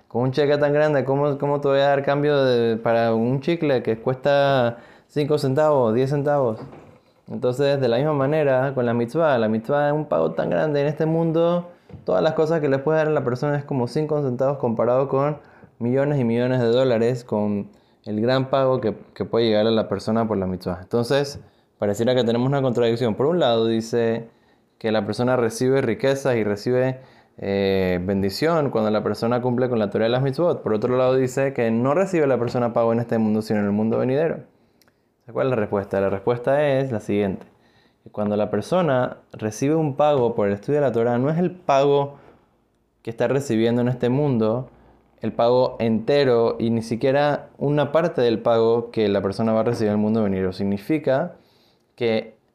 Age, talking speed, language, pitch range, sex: 20-39, 200 wpm, Spanish, 115-140 Hz, male